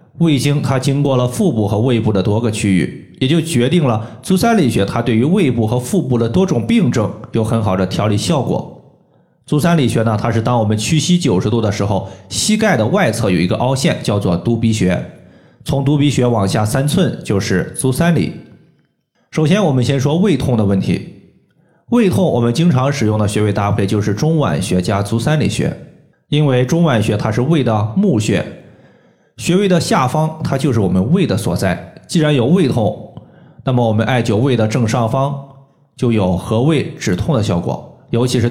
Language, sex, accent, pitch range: Chinese, male, native, 110-150 Hz